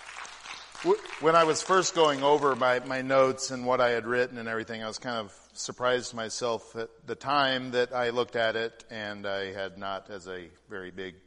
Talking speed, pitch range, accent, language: 200 wpm, 110-140 Hz, American, English